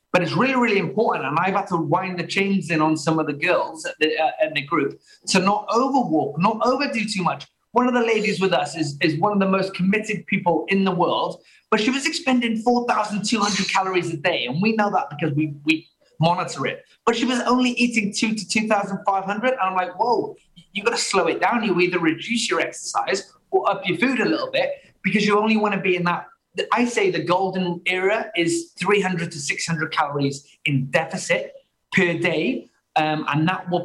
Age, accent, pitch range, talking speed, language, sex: 30-49, British, 165-220 Hz, 215 wpm, English, male